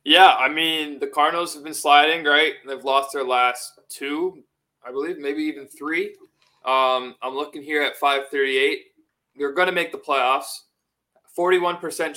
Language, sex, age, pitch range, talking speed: English, male, 20-39, 145-185 Hz, 160 wpm